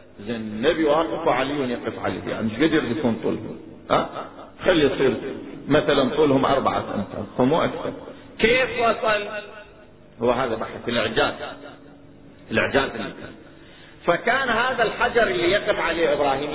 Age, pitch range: 40-59, 155-220 Hz